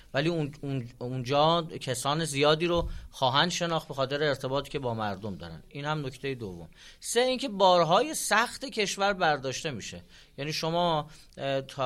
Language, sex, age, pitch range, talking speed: Persian, male, 30-49, 125-155 Hz, 145 wpm